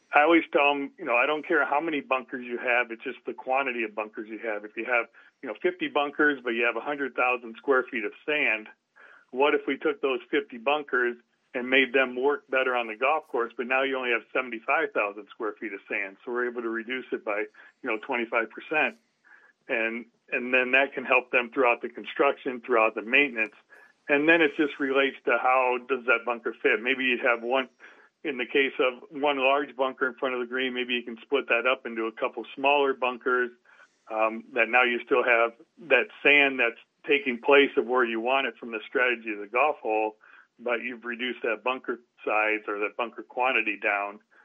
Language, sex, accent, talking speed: English, male, American, 215 wpm